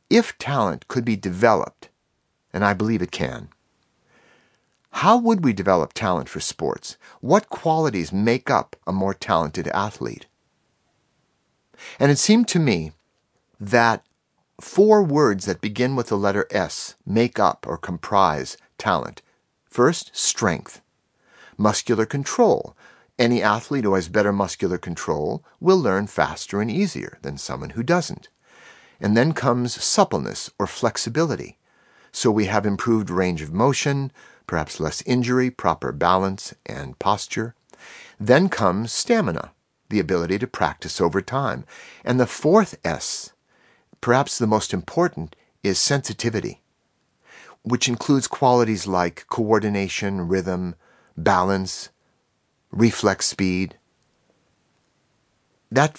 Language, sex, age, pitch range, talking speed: English, male, 50-69, 100-140 Hz, 120 wpm